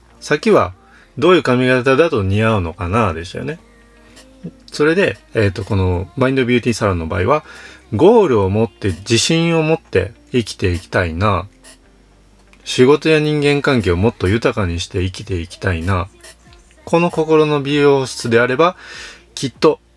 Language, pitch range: Japanese, 90-125 Hz